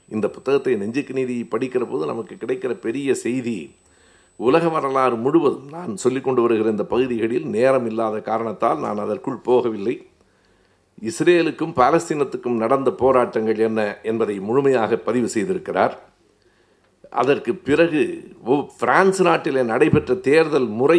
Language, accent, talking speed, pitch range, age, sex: Tamil, native, 110 wpm, 120-175 Hz, 60-79, male